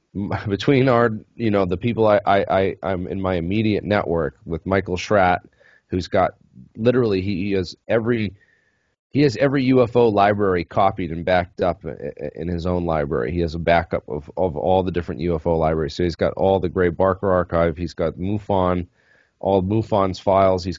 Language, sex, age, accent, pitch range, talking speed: English, male, 30-49, American, 85-100 Hz, 175 wpm